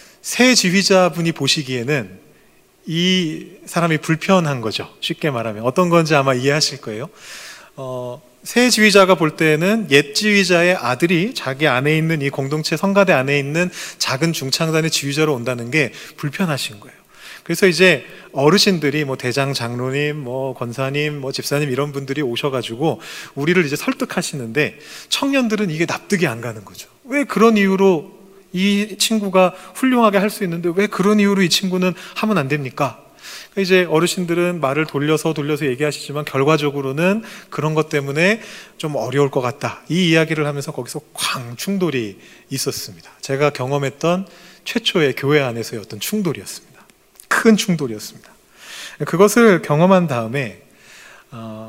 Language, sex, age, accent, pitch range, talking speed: English, male, 30-49, Korean, 135-185 Hz, 125 wpm